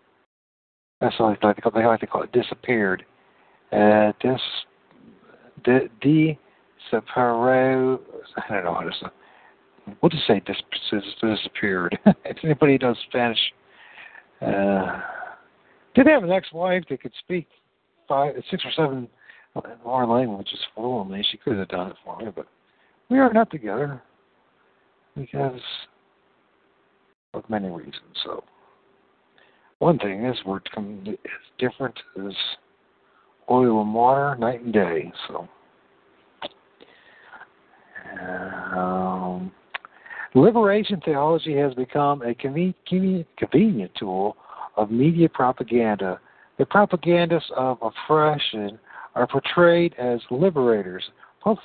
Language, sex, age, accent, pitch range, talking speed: English, male, 60-79, American, 110-155 Hz, 115 wpm